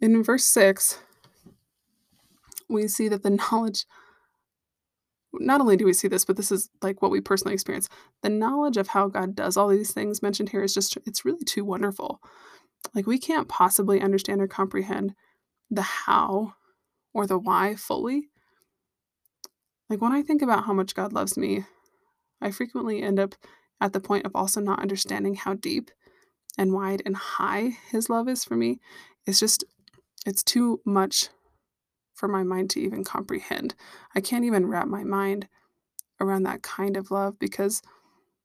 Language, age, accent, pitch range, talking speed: English, 20-39, American, 195-230 Hz, 165 wpm